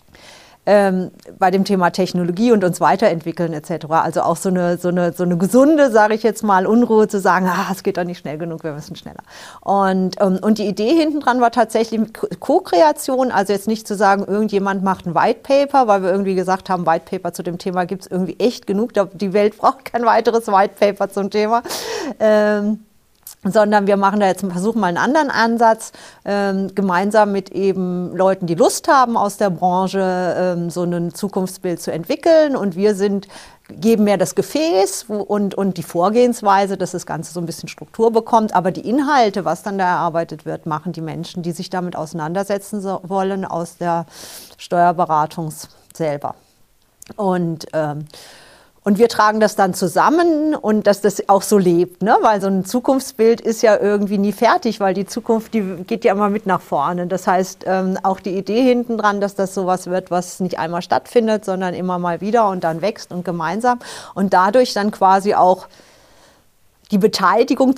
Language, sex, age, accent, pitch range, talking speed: German, female, 40-59, German, 180-215 Hz, 185 wpm